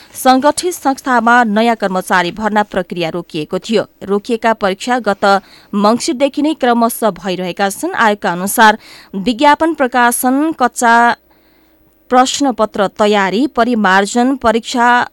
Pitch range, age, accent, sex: 200-265 Hz, 20-39, Indian, female